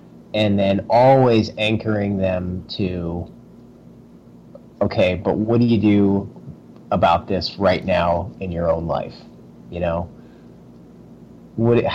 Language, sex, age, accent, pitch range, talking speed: English, male, 30-49, American, 90-115 Hz, 115 wpm